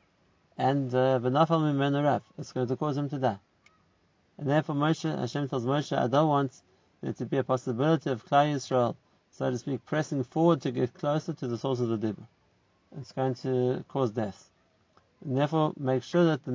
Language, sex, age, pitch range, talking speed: English, male, 50-69, 125-170 Hz, 180 wpm